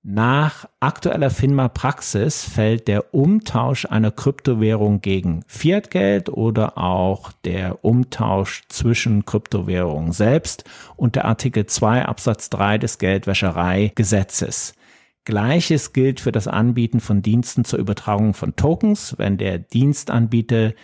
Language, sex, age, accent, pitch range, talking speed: German, male, 50-69, German, 95-120 Hz, 110 wpm